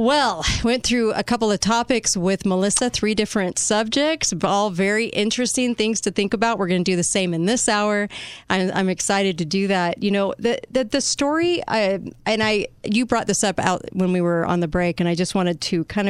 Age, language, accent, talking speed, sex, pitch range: 40-59, English, American, 225 wpm, female, 185-235 Hz